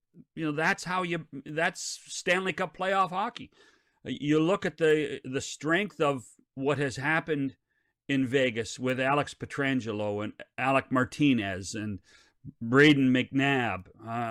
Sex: male